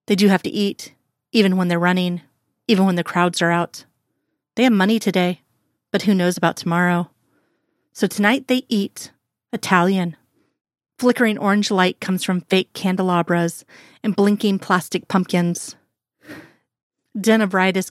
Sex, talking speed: female, 135 wpm